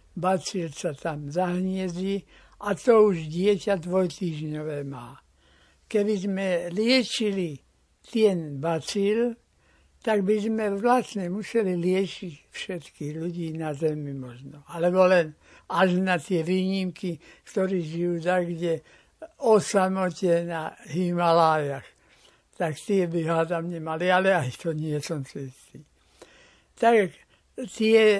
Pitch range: 165-215 Hz